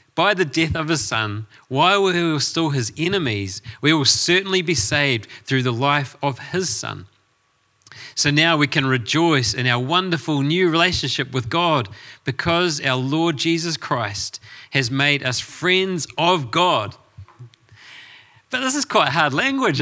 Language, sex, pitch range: English, male, 115-150 Hz